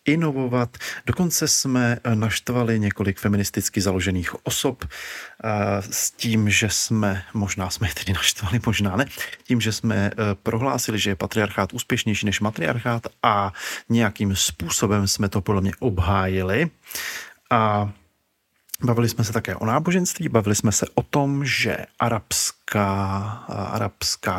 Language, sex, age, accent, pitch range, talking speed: Czech, male, 40-59, native, 100-120 Hz, 130 wpm